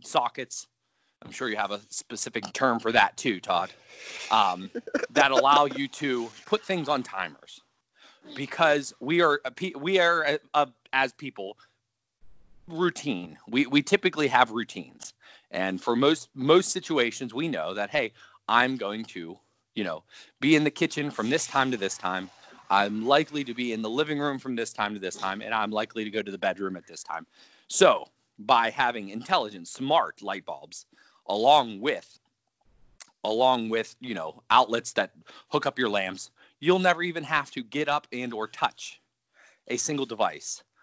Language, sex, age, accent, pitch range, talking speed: English, male, 30-49, American, 110-155 Hz, 170 wpm